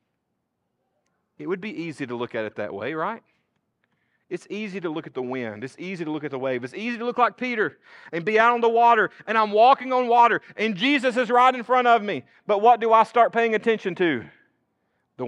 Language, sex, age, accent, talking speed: English, male, 40-59, American, 230 wpm